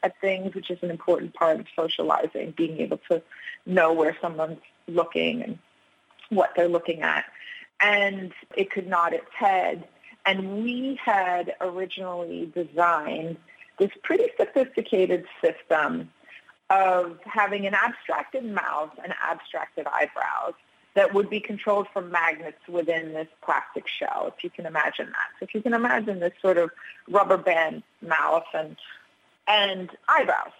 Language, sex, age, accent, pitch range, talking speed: English, female, 30-49, American, 175-215 Hz, 140 wpm